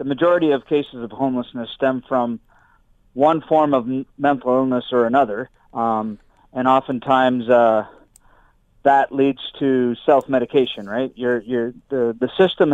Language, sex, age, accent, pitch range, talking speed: English, male, 40-59, American, 120-140 Hz, 125 wpm